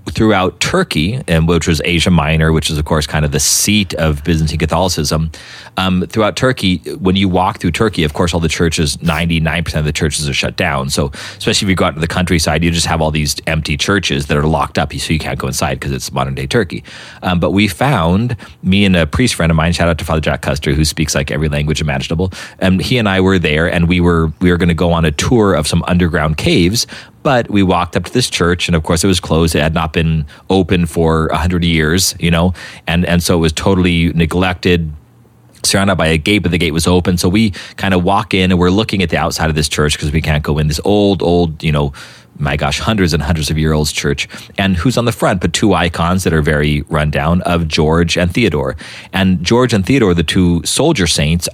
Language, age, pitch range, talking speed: English, 30-49, 80-95 Hz, 245 wpm